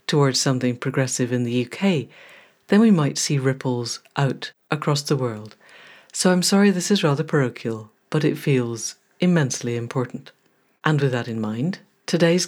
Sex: female